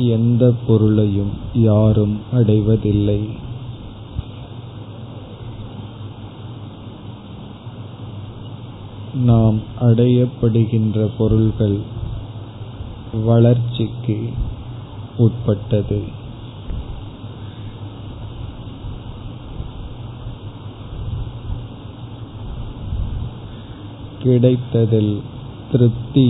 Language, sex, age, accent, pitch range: Tamil, male, 30-49, native, 105-115 Hz